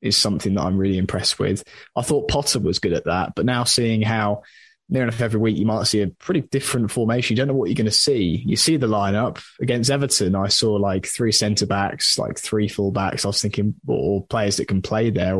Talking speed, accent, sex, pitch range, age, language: 235 wpm, British, male, 100-125 Hz, 20-39, English